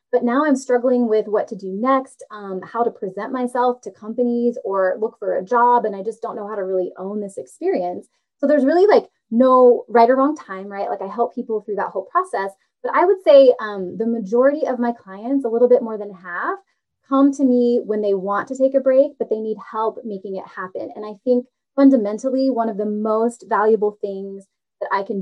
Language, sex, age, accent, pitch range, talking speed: English, female, 20-39, American, 205-255 Hz, 230 wpm